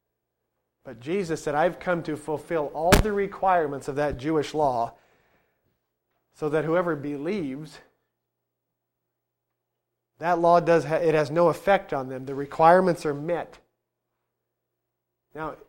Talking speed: 125 wpm